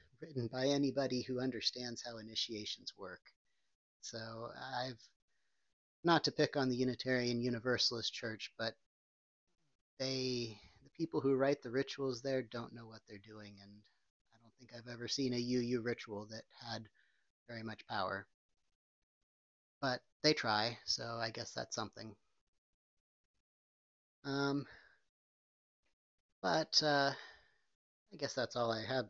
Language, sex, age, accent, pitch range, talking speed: English, male, 30-49, American, 110-135 Hz, 130 wpm